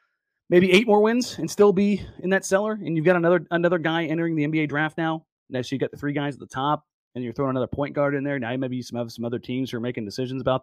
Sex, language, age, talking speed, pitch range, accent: male, English, 30-49, 295 wpm, 130-165 Hz, American